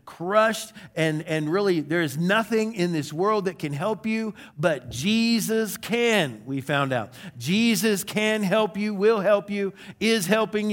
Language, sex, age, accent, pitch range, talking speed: English, male, 50-69, American, 165-215 Hz, 155 wpm